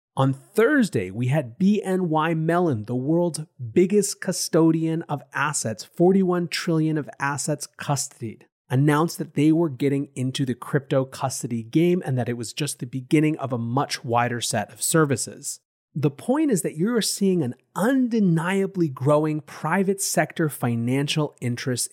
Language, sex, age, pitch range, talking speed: English, male, 30-49, 125-165 Hz, 150 wpm